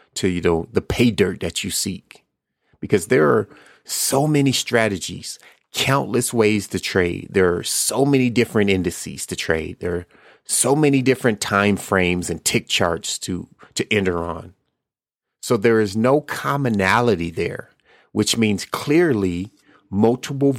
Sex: male